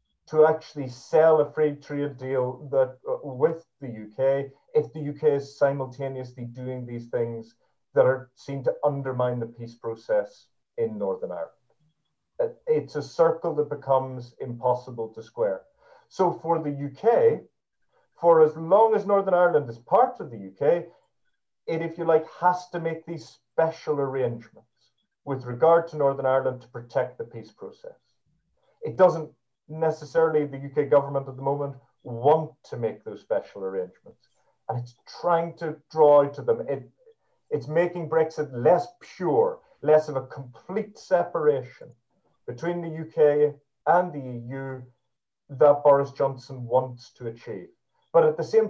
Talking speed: 150 wpm